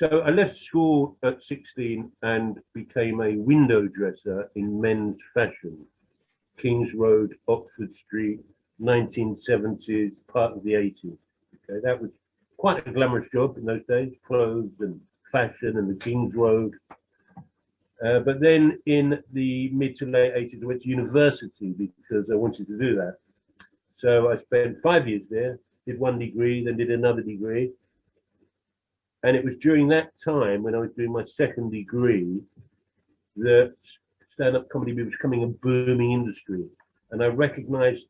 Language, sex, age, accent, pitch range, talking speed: English, male, 50-69, British, 110-135 Hz, 150 wpm